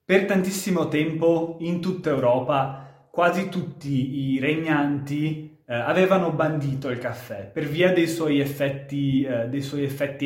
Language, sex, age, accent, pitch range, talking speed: Italian, male, 20-39, native, 130-170 Hz, 140 wpm